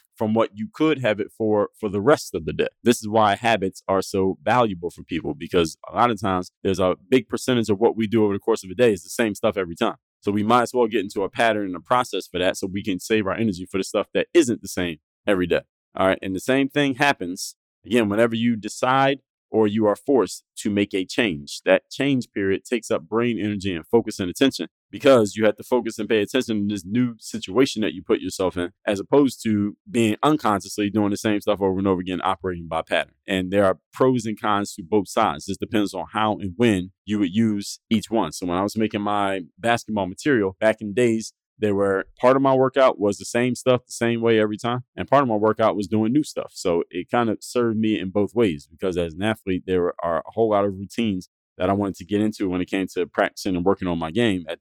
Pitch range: 95-120 Hz